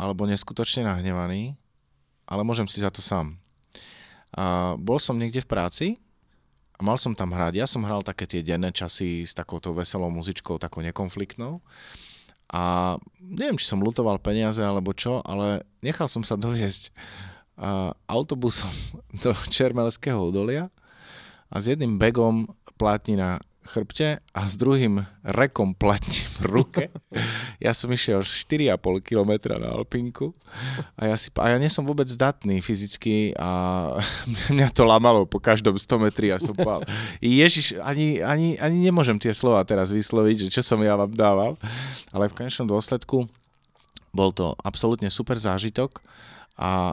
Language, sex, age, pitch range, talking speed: Slovak, male, 30-49, 95-125 Hz, 140 wpm